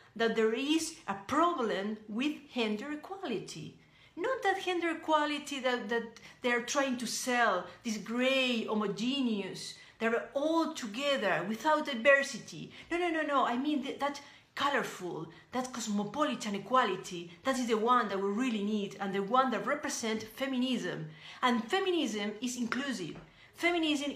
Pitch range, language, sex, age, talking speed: 210-295 Hz, English, female, 40-59, 140 wpm